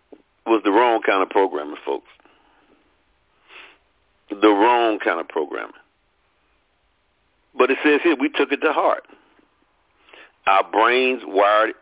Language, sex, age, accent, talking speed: English, male, 50-69, American, 120 wpm